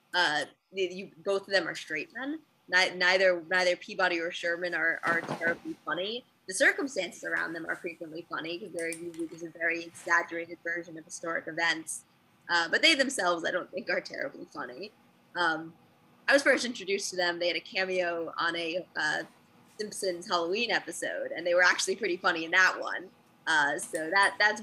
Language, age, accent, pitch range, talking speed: English, 20-39, American, 170-200 Hz, 180 wpm